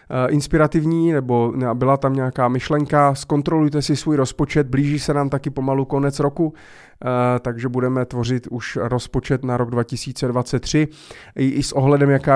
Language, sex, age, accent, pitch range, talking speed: Czech, male, 30-49, native, 115-135 Hz, 140 wpm